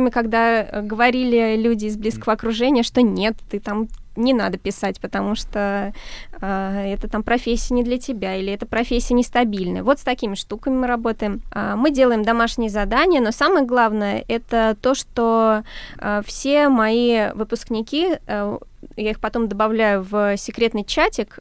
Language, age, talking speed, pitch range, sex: Russian, 20-39, 155 wpm, 210-245 Hz, female